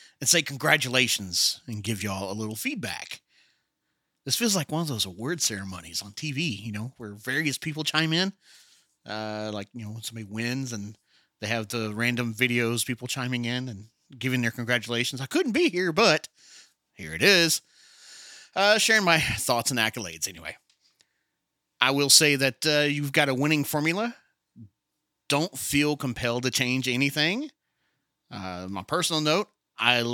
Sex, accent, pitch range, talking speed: male, American, 115-150 Hz, 165 wpm